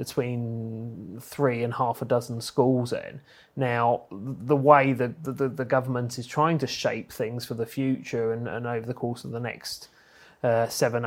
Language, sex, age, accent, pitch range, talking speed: English, male, 30-49, British, 120-135 Hz, 185 wpm